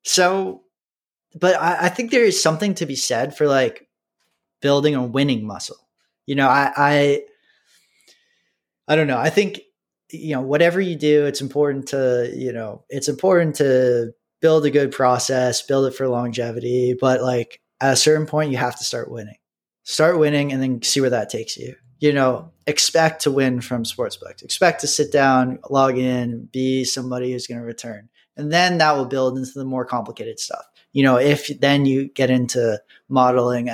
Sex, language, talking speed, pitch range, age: male, English, 185 wpm, 125-150 Hz, 20-39